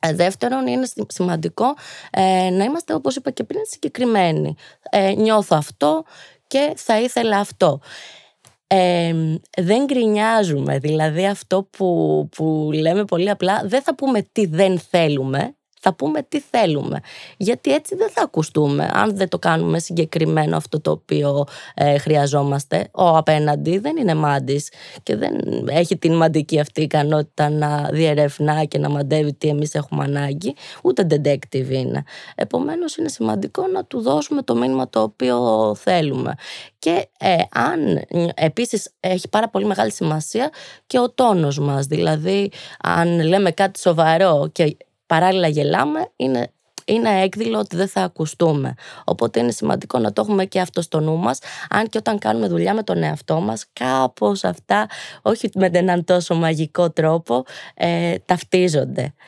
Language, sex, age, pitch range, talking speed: Greek, female, 20-39, 150-205 Hz, 140 wpm